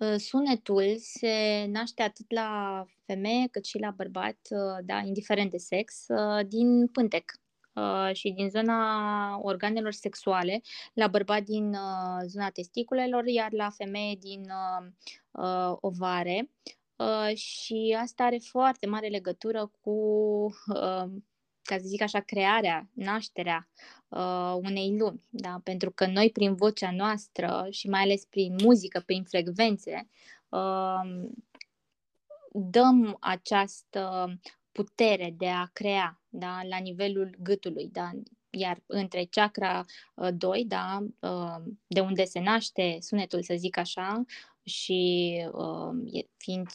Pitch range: 185-220 Hz